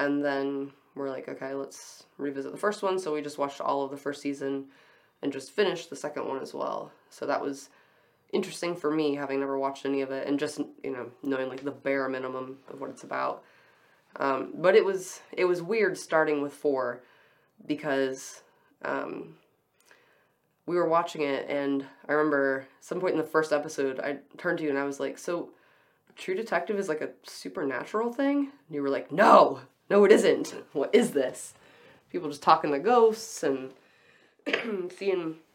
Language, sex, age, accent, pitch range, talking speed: English, female, 20-39, American, 140-170 Hz, 185 wpm